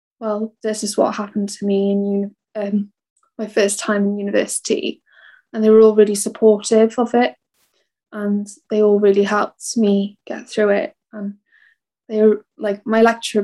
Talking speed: 165 wpm